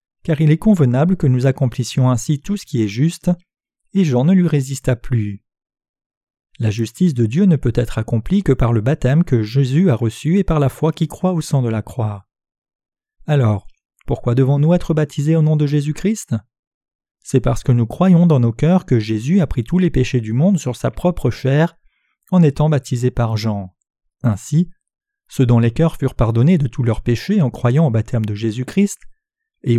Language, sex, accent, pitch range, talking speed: French, male, French, 120-170 Hz, 200 wpm